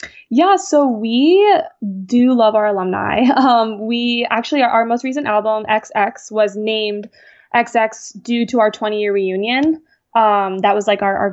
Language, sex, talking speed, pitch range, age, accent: English, female, 165 wpm, 205-235 Hz, 10-29, American